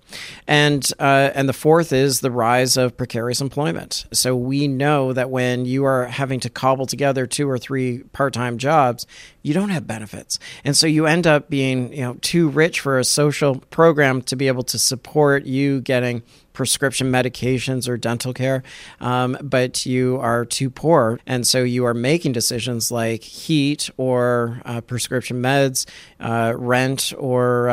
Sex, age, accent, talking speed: male, 40-59, American, 170 wpm